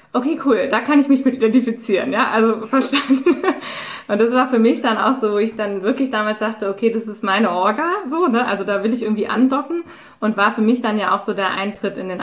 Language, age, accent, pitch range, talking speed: German, 20-39, German, 195-230 Hz, 245 wpm